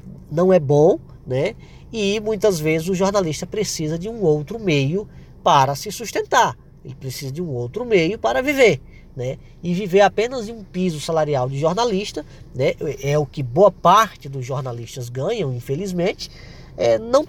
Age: 20-39